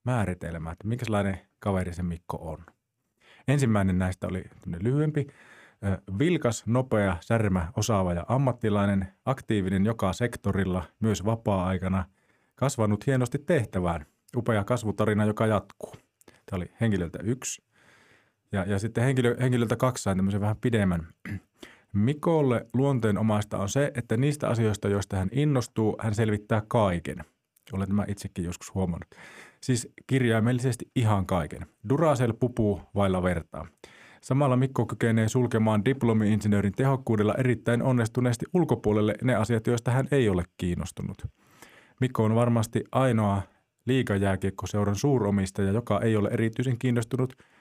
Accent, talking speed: native, 120 wpm